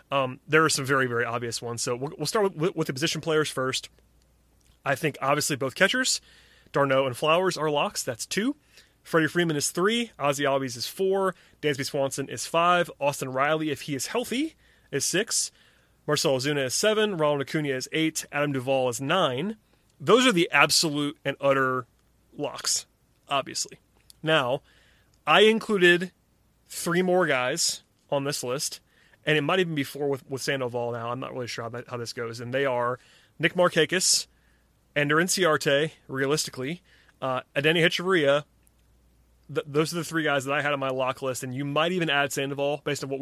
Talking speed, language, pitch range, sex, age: 180 wpm, English, 125-160 Hz, male, 30-49